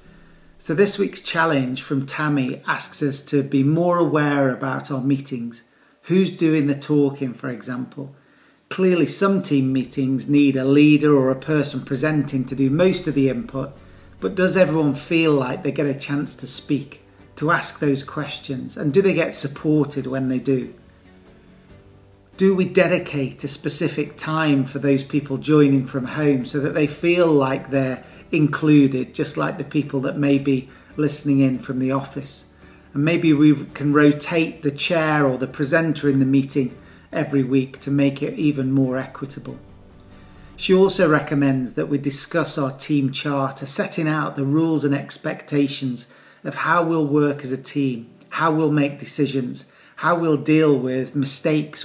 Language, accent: English, British